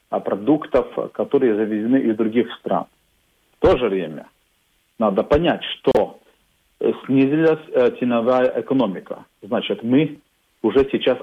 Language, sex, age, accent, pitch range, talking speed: Russian, male, 40-59, native, 120-185 Hz, 120 wpm